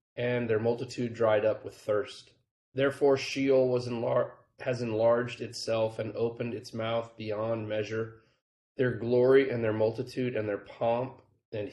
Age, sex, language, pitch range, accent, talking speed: 30-49, male, English, 110-130 Hz, American, 140 wpm